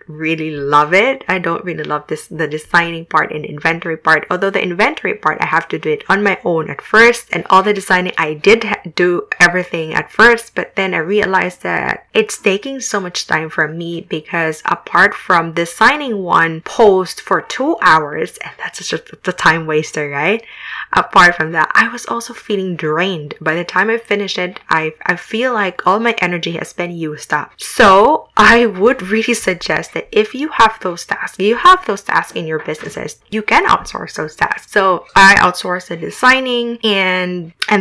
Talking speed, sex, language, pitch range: 190 wpm, female, English, 170-205 Hz